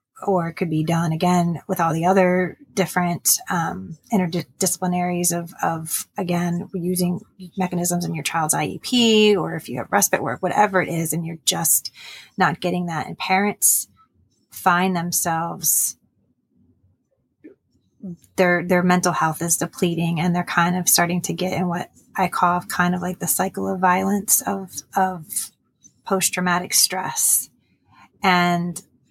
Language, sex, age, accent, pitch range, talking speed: English, female, 30-49, American, 170-190 Hz, 145 wpm